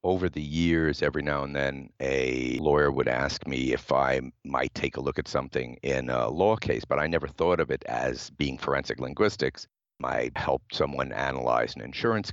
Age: 50-69